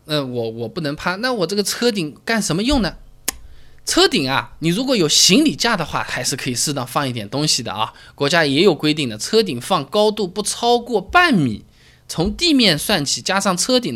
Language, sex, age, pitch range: Chinese, male, 20-39, 130-195 Hz